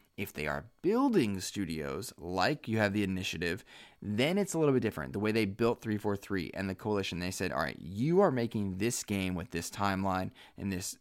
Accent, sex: American, male